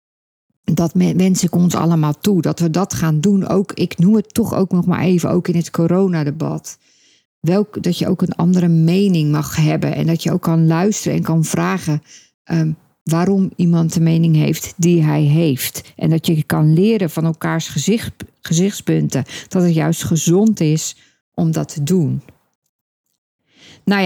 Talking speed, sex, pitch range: 175 wpm, female, 160-190 Hz